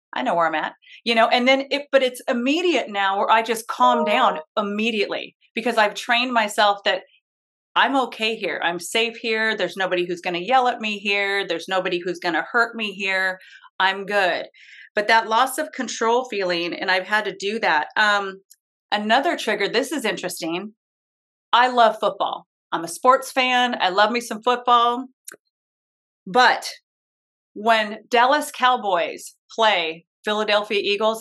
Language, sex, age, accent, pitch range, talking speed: English, female, 30-49, American, 195-240 Hz, 170 wpm